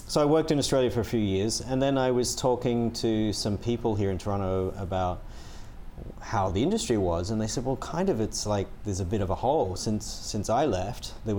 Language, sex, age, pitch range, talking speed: English, male, 30-49, 95-115 Hz, 230 wpm